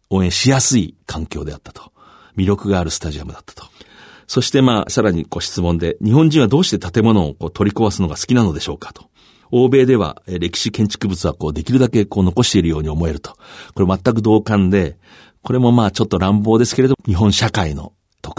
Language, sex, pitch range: Japanese, male, 85-115 Hz